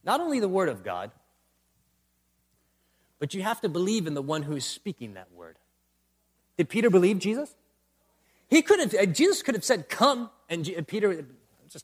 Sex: male